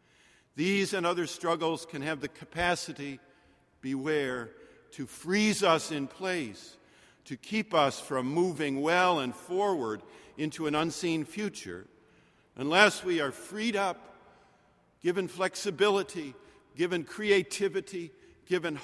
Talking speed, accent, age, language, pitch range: 115 wpm, American, 50-69, English, 135-200 Hz